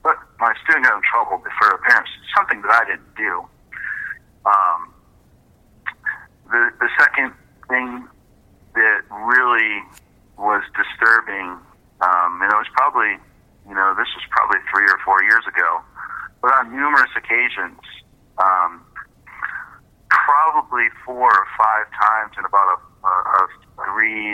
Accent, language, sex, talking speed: American, English, male, 130 wpm